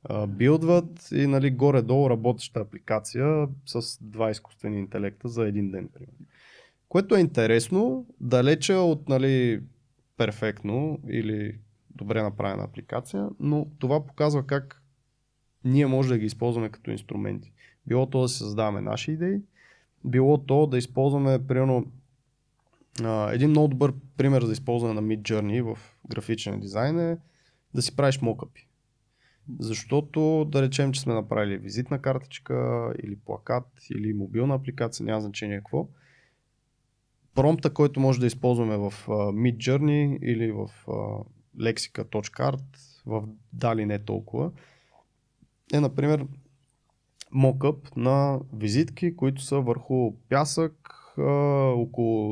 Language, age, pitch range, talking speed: Bulgarian, 20-39, 110-140 Hz, 120 wpm